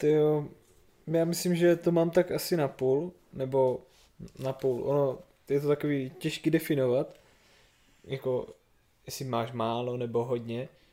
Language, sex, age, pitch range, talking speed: Czech, male, 20-39, 130-145 Hz, 135 wpm